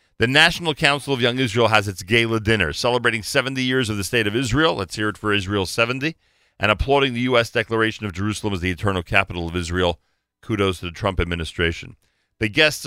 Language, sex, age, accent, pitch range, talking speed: English, male, 40-59, American, 100-135 Hz, 205 wpm